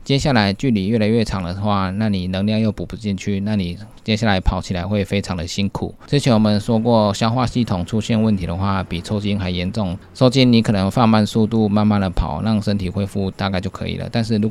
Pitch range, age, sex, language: 95-110 Hz, 20-39, male, Chinese